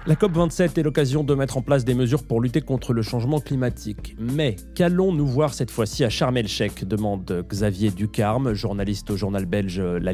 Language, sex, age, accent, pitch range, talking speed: French, male, 30-49, French, 110-150 Hz, 185 wpm